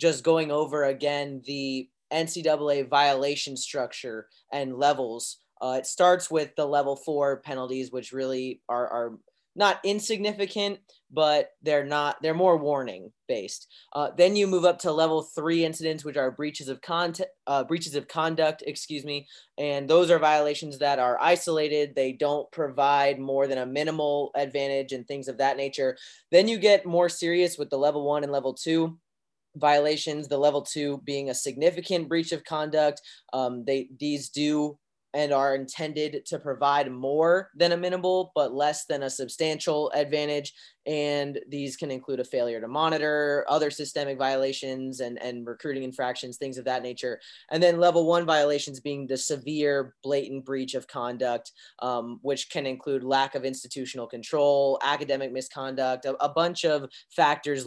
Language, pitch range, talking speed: English, 135-160 Hz, 165 wpm